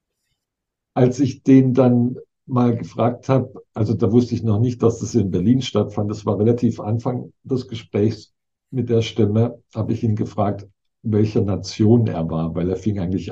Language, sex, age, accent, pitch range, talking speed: German, male, 50-69, German, 95-115 Hz, 175 wpm